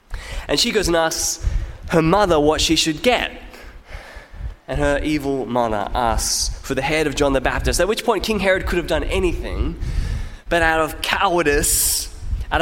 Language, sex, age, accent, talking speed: English, male, 20-39, Australian, 175 wpm